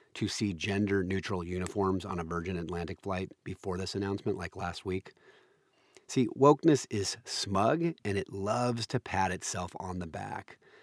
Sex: male